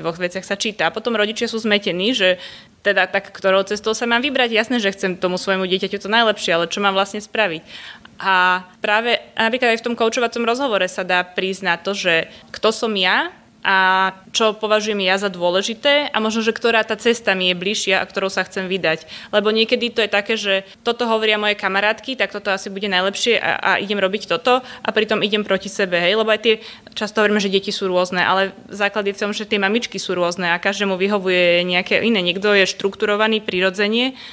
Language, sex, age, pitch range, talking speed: Slovak, female, 20-39, 190-220 Hz, 210 wpm